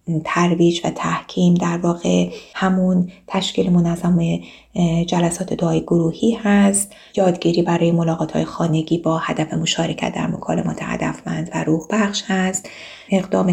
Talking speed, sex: 125 wpm, female